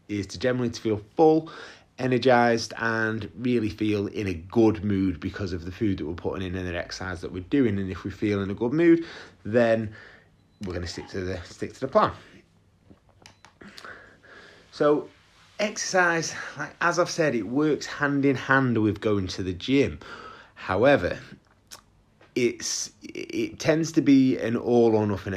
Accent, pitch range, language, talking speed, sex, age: British, 100-130 Hz, English, 175 wpm, male, 30-49